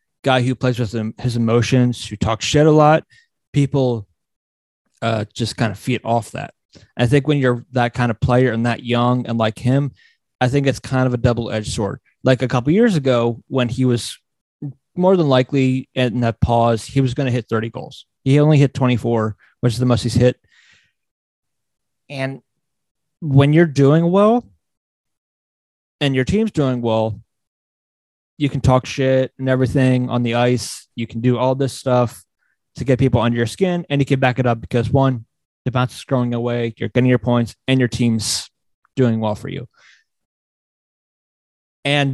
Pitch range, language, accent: 120-140 Hz, English, American